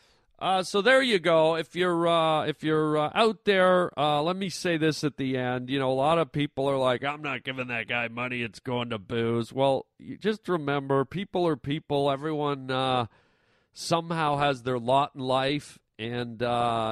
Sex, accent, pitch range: male, American, 120-160 Hz